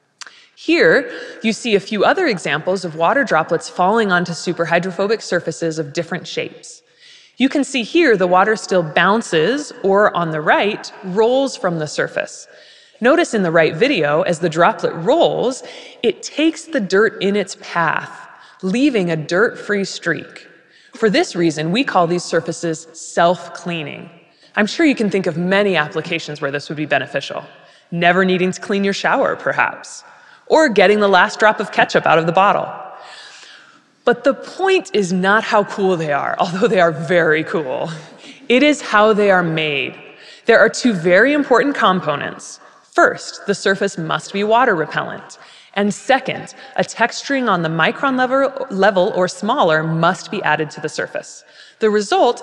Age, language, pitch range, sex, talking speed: 20-39, English, 170-230 Hz, female, 165 wpm